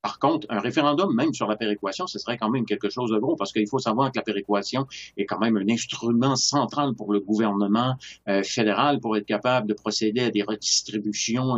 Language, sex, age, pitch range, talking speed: French, male, 50-69, 105-125 Hz, 215 wpm